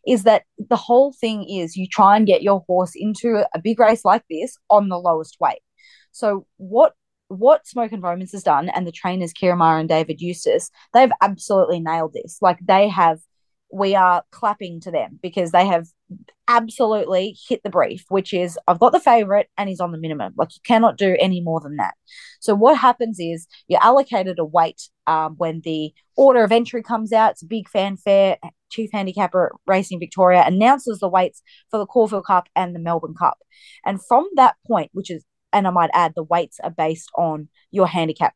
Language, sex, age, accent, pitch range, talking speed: English, female, 20-39, Australian, 175-230 Hz, 200 wpm